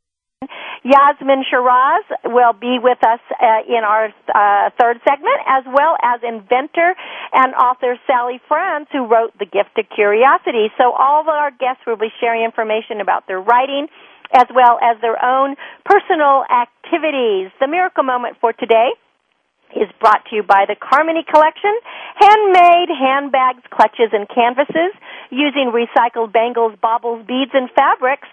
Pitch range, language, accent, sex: 230-290 Hz, English, American, female